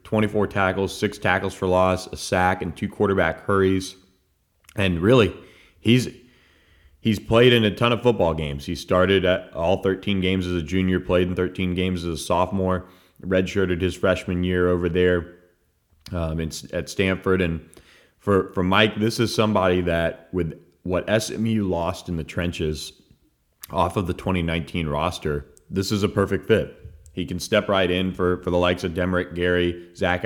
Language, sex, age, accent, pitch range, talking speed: English, male, 30-49, American, 85-95 Hz, 175 wpm